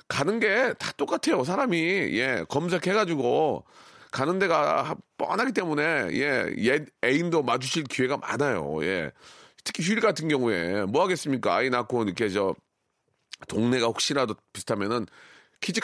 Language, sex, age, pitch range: Korean, male, 40-59, 120-170 Hz